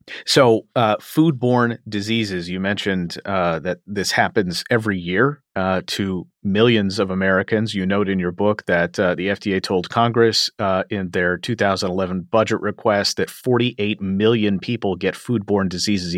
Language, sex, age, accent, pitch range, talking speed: English, male, 40-59, American, 100-120 Hz, 150 wpm